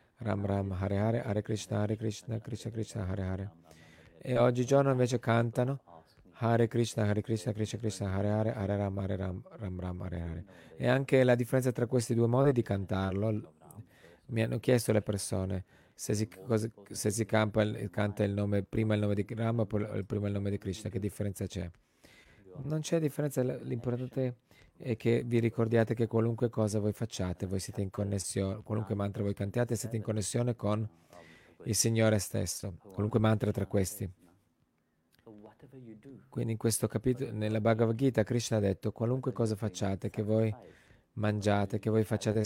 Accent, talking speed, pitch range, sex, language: native, 170 wpm, 100-115 Hz, male, Italian